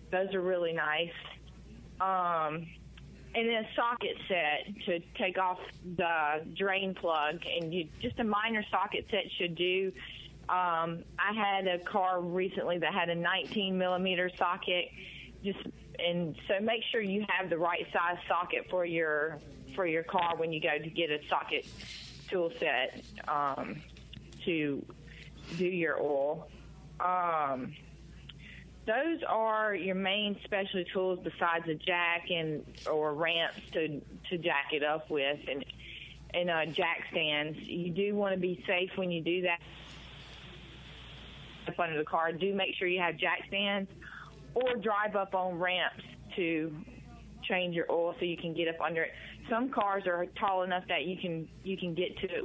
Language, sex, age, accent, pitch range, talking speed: English, female, 30-49, American, 160-190 Hz, 160 wpm